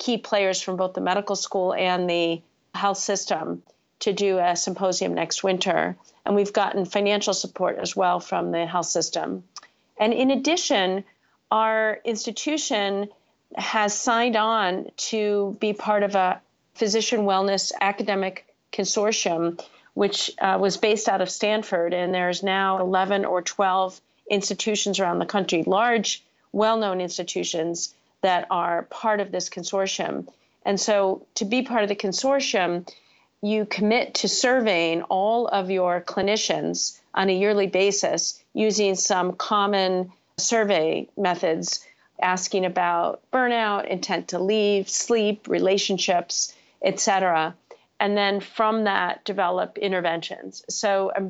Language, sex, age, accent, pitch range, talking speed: English, female, 40-59, American, 180-210 Hz, 135 wpm